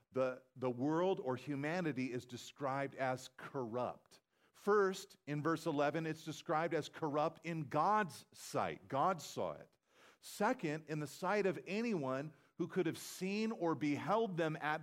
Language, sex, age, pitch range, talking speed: English, male, 40-59, 120-165 Hz, 150 wpm